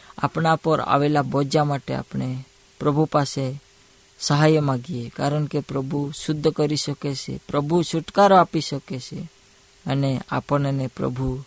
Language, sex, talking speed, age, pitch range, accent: Hindi, female, 105 wpm, 20-39, 135-155 Hz, native